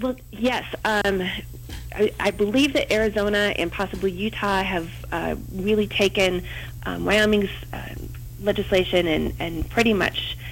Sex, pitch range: female, 125-205 Hz